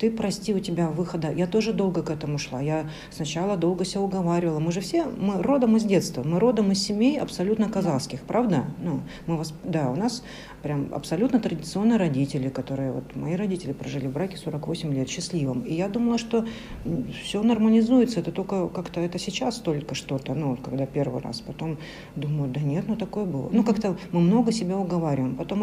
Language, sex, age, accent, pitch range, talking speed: Russian, female, 50-69, native, 155-200 Hz, 185 wpm